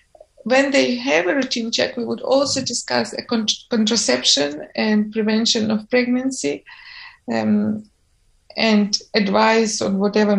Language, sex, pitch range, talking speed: English, female, 205-240 Hz, 115 wpm